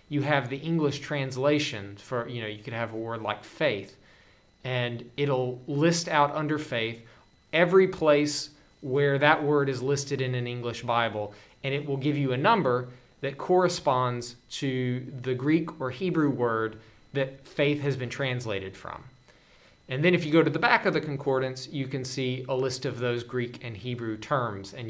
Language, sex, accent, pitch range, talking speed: English, male, American, 120-145 Hz, 185 wpm